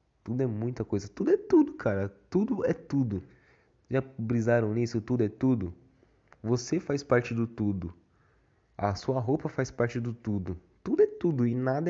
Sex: male